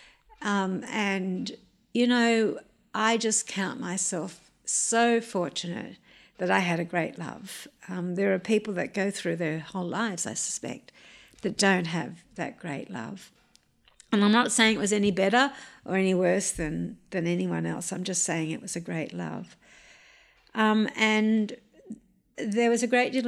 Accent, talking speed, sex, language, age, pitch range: Australian, 165 wpm, female, English, 60-79, 175-210 Hz